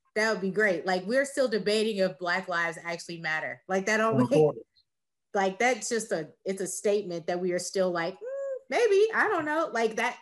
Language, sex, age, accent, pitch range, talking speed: English, female, 20-39, American, 180-225 Hz, 205 wpm